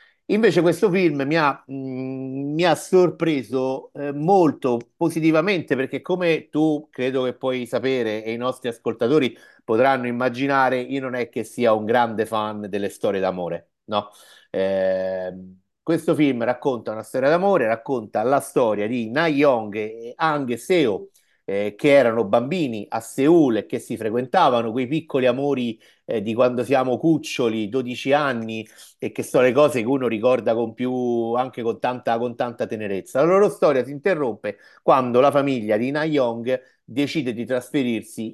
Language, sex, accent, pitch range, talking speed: Italian, male, native, 115-155 Hz, 160 wpm